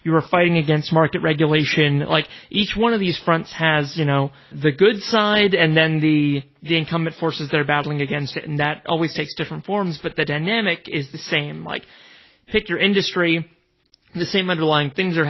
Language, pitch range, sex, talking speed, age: English, 150-180 Hz, male, 195 wpm, 30-49